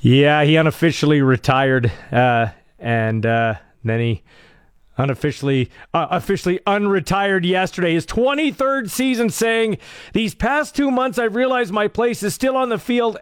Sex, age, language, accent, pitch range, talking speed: male, 40-59, English, American, 155-225 Hz, 140 wpm